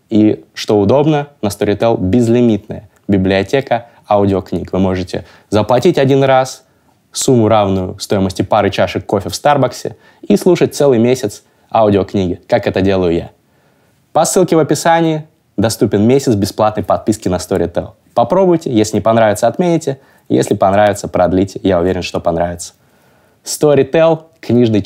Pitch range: 95-120 Hz